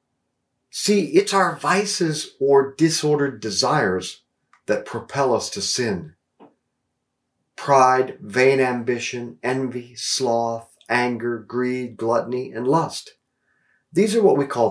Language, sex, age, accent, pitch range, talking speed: English, male, 50-69, American, 130-190 Hz, 110 wpm